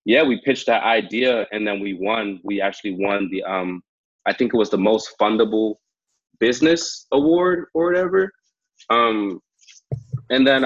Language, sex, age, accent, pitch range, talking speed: English, male, 20-39, American, 100-120 Hz, 160 wpm